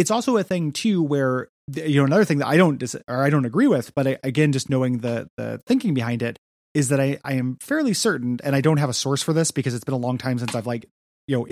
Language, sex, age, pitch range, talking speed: English, male, 20-39, 125-155 Hz, 285 wpm